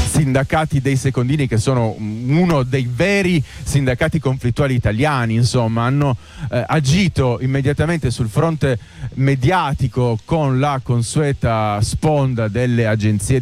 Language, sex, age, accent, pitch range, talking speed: Italian, male, 30-49, native, 115-145 Hz, 110 wpm